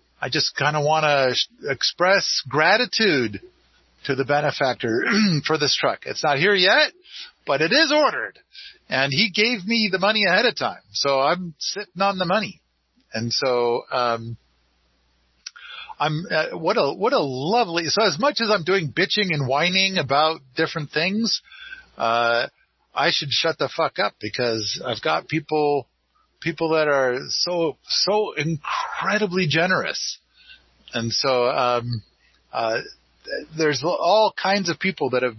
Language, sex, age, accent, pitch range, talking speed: English, male, 50-69, American, 120-190 Hz, 150 wpm